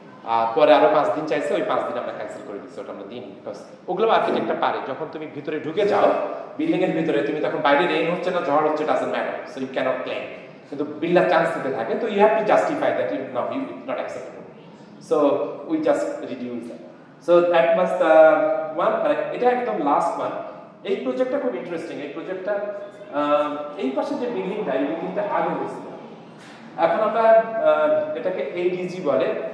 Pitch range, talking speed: 145-220 Hz, 110 wpm